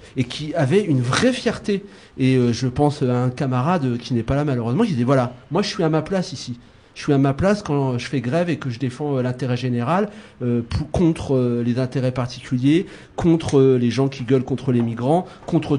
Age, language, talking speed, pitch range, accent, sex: 40-59, French, 225 wpm, 130-170 Hz, French, male